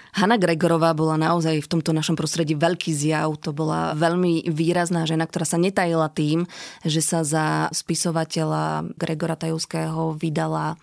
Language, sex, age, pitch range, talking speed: Slovak, female, 20-39, 160-175 Hz, 145 wpm